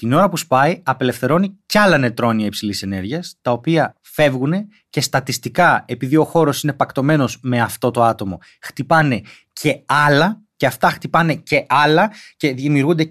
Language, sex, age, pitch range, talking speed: Greek, male, 30-49, 130-180 Hz, 155 wpm